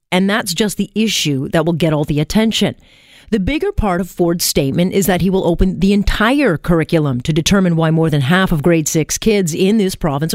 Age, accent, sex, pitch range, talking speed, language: 40-59, American, female, 165-210 Hz, 220 wpm, English